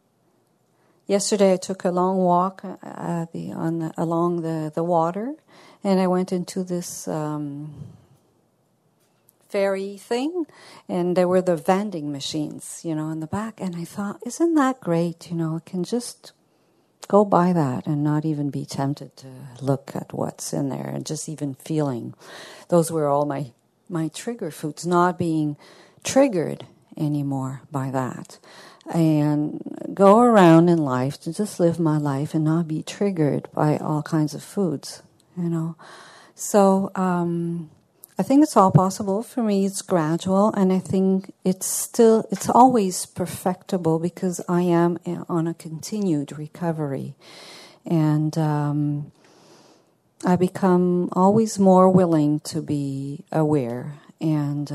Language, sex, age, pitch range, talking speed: English, female, 50-69, 150-190 Hz, 145 wpm